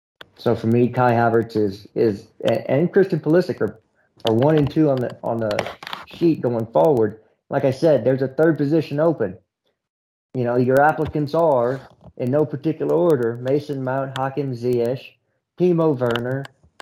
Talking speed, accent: 160 wpm, American